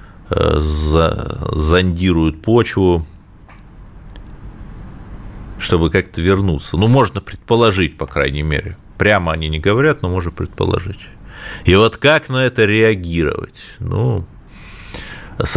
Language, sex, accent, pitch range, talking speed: Russian, male, native, 85-110 Hz, 100 wpm